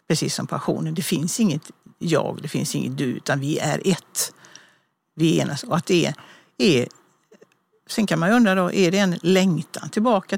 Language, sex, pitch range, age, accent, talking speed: Swedish, female, 165-195 Hz, 60-79, native, 170 wpm